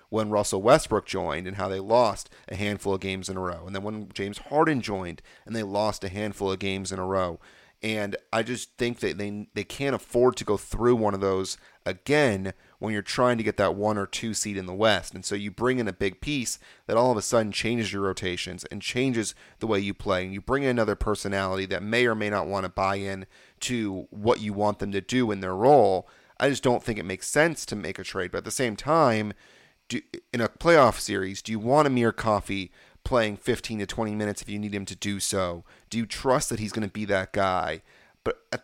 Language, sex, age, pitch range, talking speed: English, male, 30-49, 95-120 Hz, 245 wpm